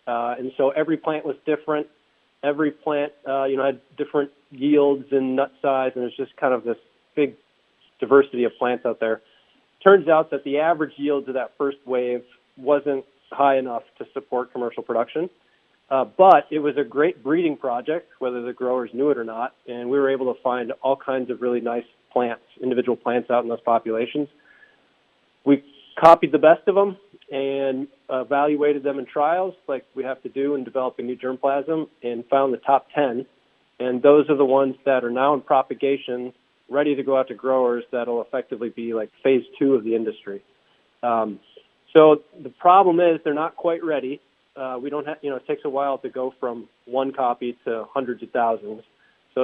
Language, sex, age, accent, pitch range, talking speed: English, male, 40-59, American, 125-145 Hz, 195 wpm